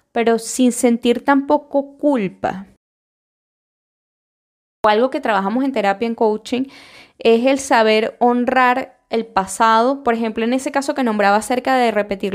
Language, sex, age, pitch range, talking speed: Spanish, female, 10-29, 210-250 Hz, 140 wpm